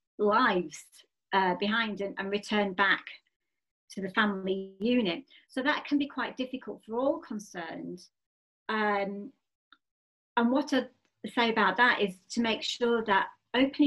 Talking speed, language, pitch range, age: 145 wpm, English, 190-245 Hz, 40-59